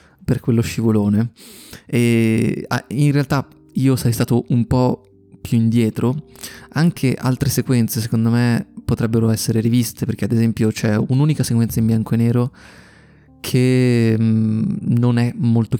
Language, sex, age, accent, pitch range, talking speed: Italian, male, 20-39, native, 110-120 Hz, 135 wpm